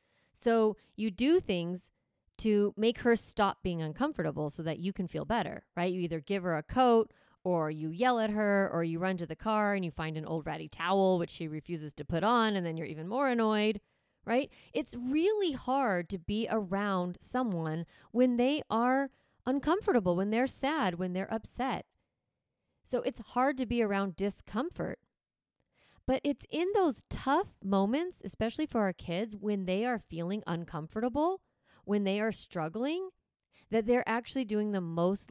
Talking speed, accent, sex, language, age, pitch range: 175 wpm, American, female, English, 30-49, 180-245 Hz